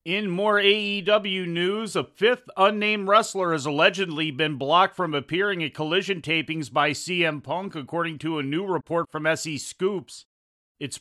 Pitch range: 155-180 Hz